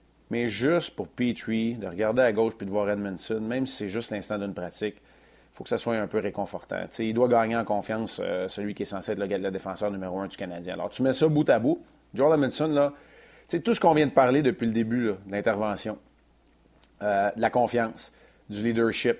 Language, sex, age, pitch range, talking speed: French, male, 30-49, 100-115 Hz, 220 wpm